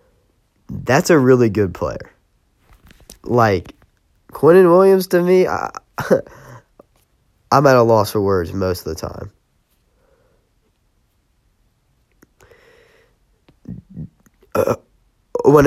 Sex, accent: male, American